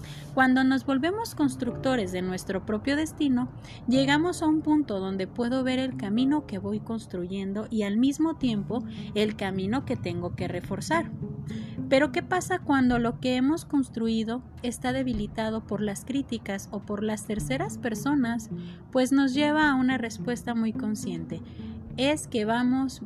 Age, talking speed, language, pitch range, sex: 30-49, 155 wpm, Spanish, 205-265 Hz, female